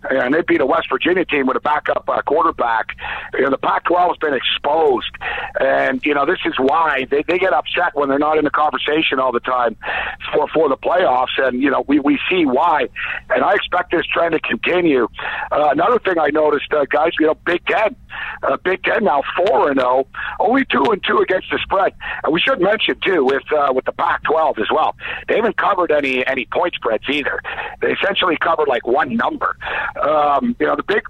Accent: American